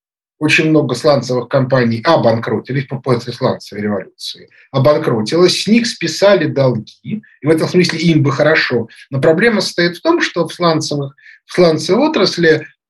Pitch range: 135-210 Hz